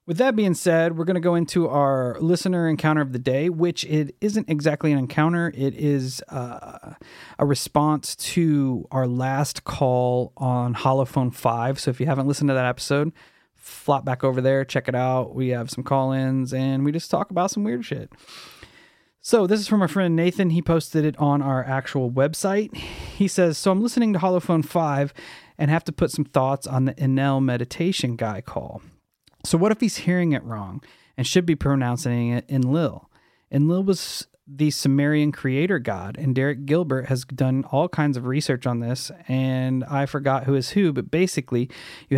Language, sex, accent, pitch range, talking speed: English, male, American, 130-170 Hz, 190 wpm